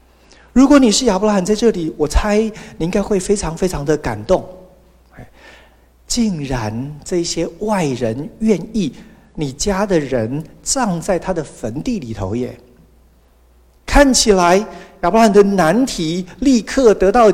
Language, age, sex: Chinese, 50-69, male